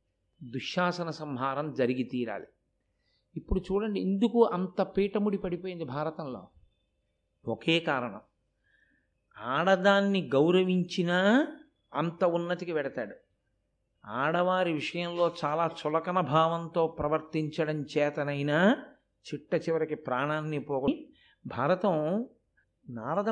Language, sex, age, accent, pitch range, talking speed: Telugu, male, 50-69, native, 155-200 Hz, 75 wpm